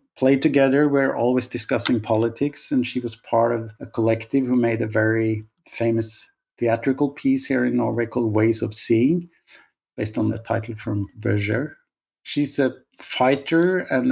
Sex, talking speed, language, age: male, 155 wpm, English, 50-69